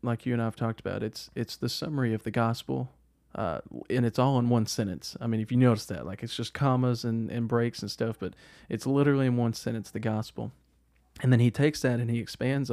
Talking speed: 245 wpm